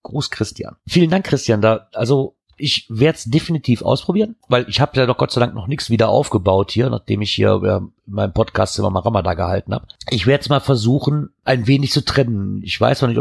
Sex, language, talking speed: male, German, 225 wpm